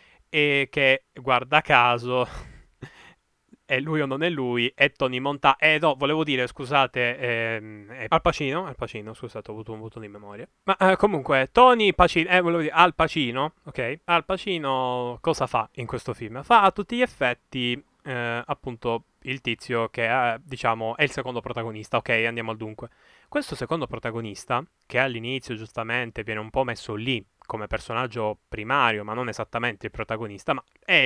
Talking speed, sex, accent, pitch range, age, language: 175 wpm, male, native, 115-155 Hz, 10-29, Italian